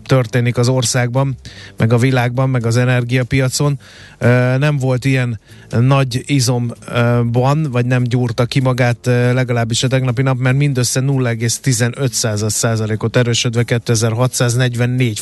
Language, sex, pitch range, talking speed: Hungarian, male, 115-140 Hz, 115 wpm